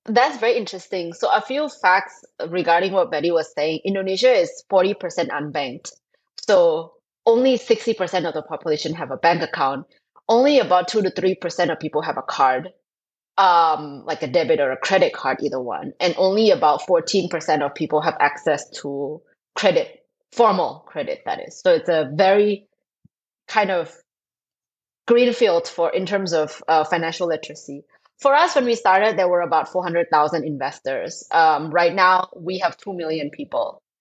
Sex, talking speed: female, 170 wpm